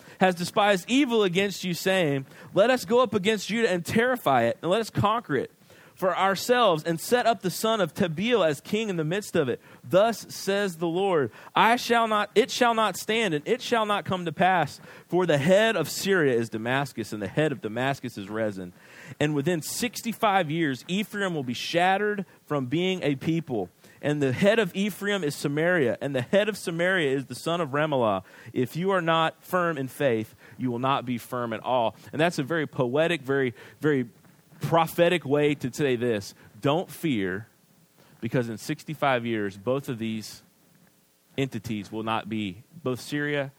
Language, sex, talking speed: English, male, 190 wpm